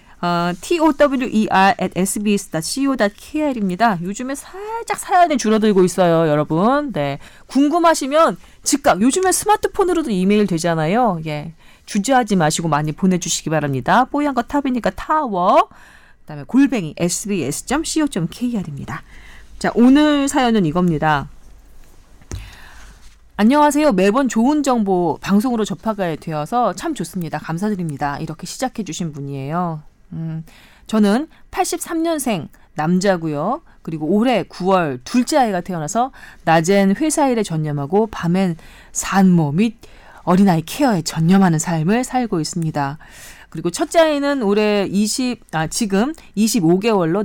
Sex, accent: female, native